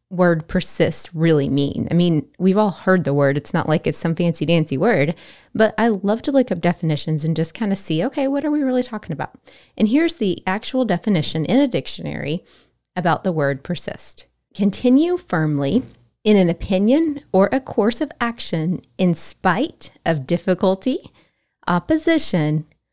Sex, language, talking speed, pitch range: female, English, 170 wpm, 160-215 Hz